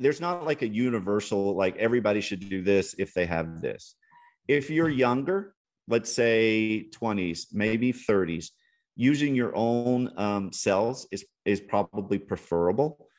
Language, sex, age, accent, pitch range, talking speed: English, male, 40-59, American, 95-115 Hz, 140 wpm